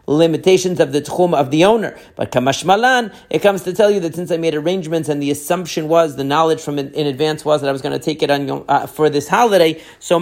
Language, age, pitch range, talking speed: English, 40-59, 140-175 Hz, 245 wpm